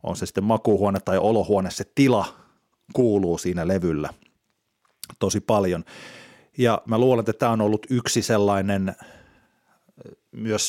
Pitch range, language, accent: 95-120 Hz, Finnish, native